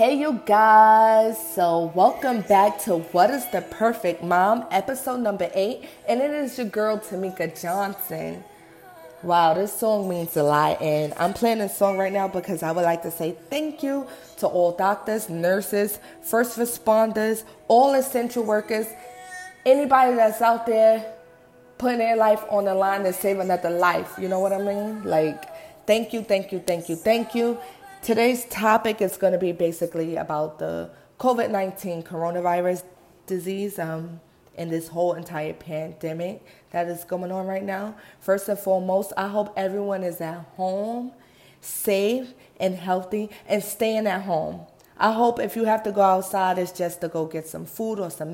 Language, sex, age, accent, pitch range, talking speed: English, female, 20-39, American, 175-220 Hz, 170 wpm